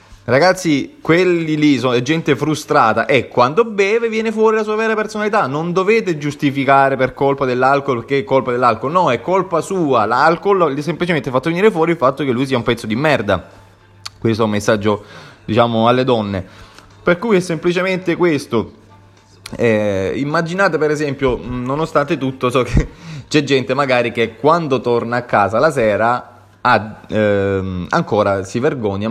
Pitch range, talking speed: 100-145 Hz, 165 wpm